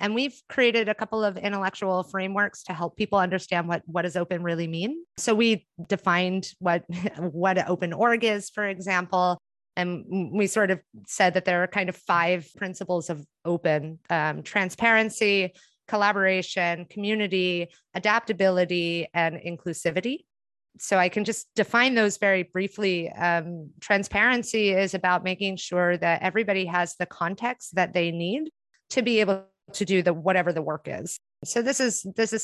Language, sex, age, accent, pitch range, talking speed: English, female, 30-49, American, 175-210 Hz, 160 wpm